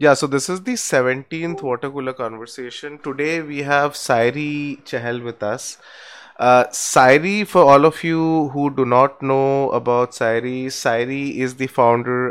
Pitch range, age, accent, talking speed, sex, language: 110-135 Hz, 20-39, Indian, 155 wpm, male, English